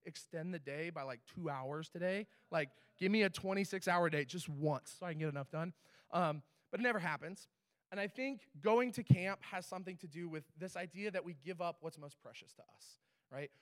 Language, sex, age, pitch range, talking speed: English, male, 20-39, 175-235 Hz, 220 wpm